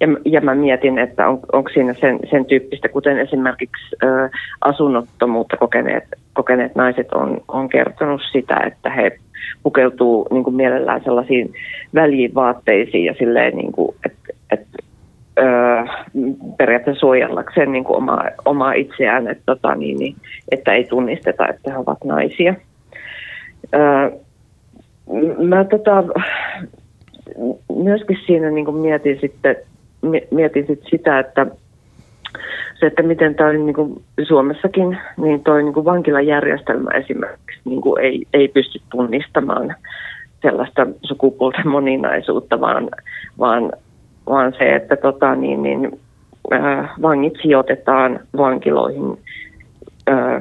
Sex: female